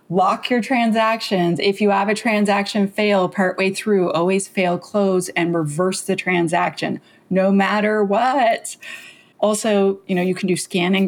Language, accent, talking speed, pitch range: English, American, 150 wpm, 175-200 Hz